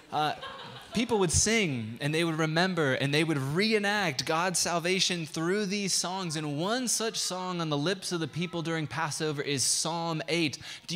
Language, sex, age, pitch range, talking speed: English, male, 20-39, 135-170 Hz, 180 wpm